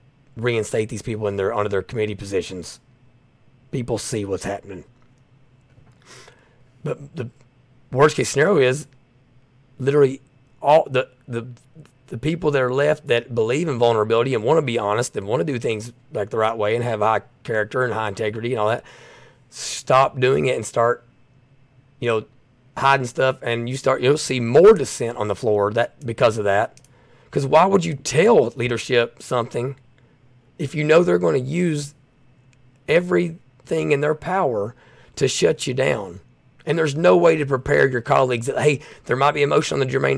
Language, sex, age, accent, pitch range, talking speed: English, male, 30-49, American, 120-135 Hz, 175 wpm